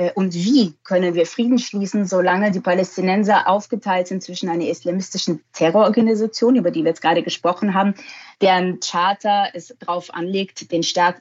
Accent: German